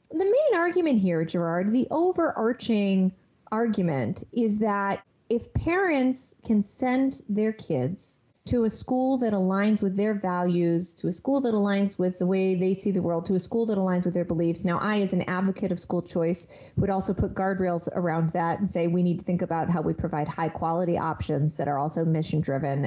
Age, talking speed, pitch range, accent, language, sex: 30-49, 195 wpm, 170-225 Hz, American, English, female